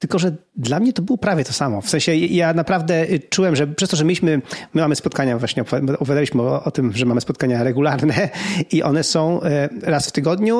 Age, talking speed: 30-49, 210 wpm